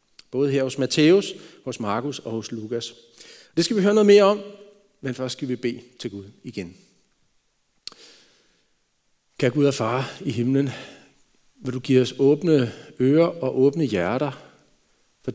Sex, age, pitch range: male, 40-59, 115-150 Hz